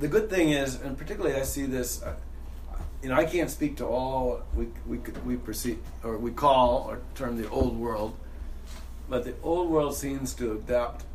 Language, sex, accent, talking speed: English, male, American, 195 wpm